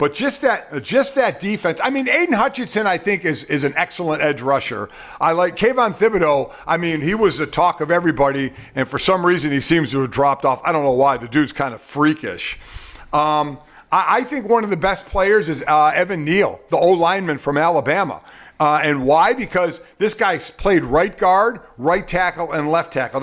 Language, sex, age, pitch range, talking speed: English, male, 50-69, 145-185 Hz, 210 wpm